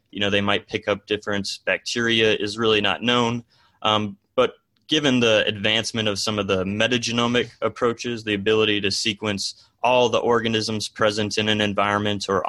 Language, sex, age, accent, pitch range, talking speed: English, male, 20-39, American, 100-115 Hz, 170 wpm